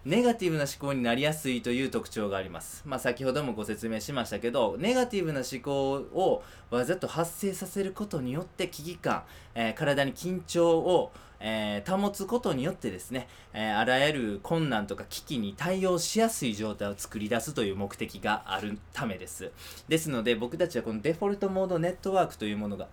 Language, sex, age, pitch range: Japanese, male, 20-39, 105-165 Hz